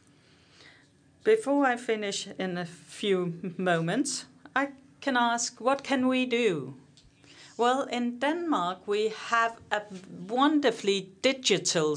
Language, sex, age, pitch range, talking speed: Danish, female, 40-59, 160-235 Hz, 110 wpm